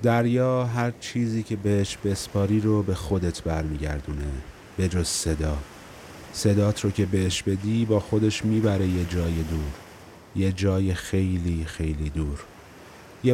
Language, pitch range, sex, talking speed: Persian, 80-100 Hz, male, 135 wpm